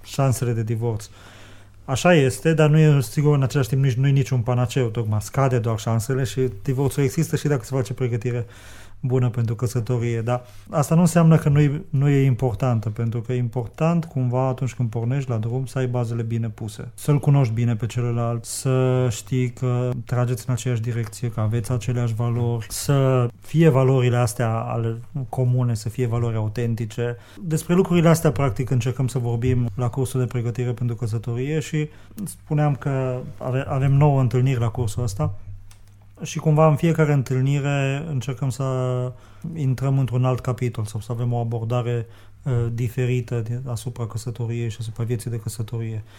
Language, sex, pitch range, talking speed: Romanian, male, 115-130 Hz, 165 wpm